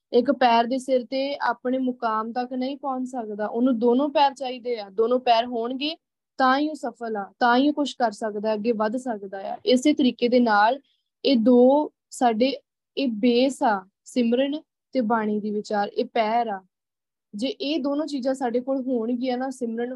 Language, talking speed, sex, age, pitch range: Punjabi, 185 wpm, female, 20-39, 225-265 Hz